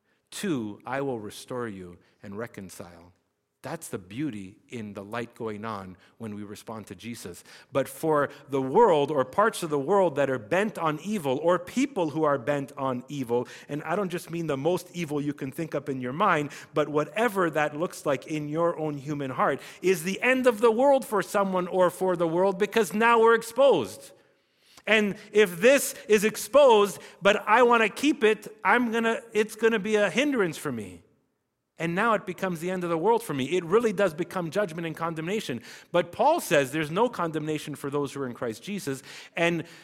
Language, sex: English, male